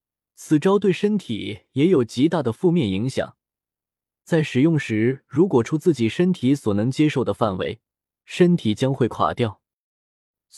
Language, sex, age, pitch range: Chinese, male, 20-39, 115-165 Hz